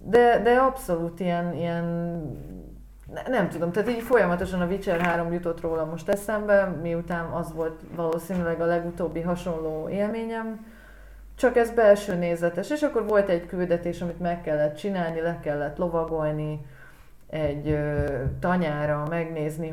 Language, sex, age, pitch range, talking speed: Hungarian, female, 30-49, 160-190 Hz, 135 wpm